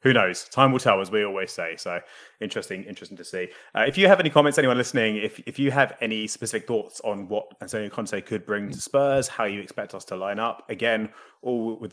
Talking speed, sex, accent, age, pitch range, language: 235 wpm, male, British, 30-49, 105-145 Hz, English